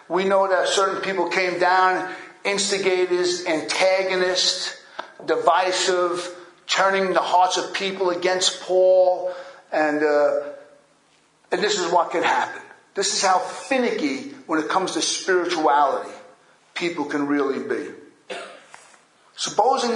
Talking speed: 115 wpm